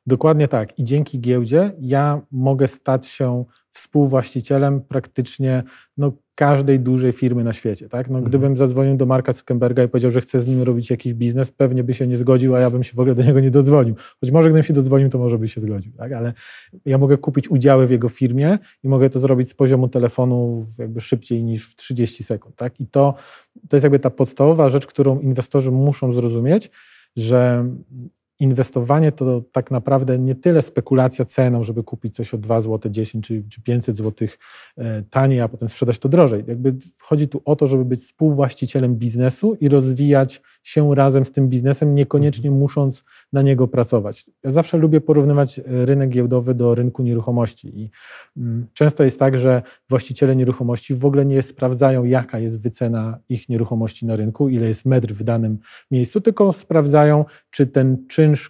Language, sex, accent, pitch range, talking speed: Polish, male, native, 120-140 Hz, 180 wpm